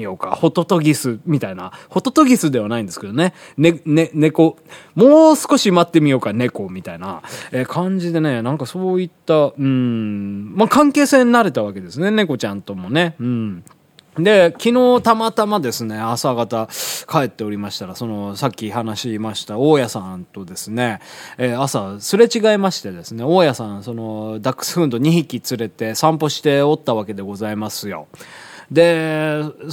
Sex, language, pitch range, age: male, Japanese, 115-180 Hz, 20-39